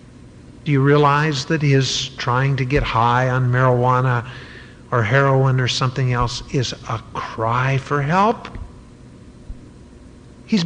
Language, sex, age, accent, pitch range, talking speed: English, male, 50-69, American, 120-140 Hz, 125 wpm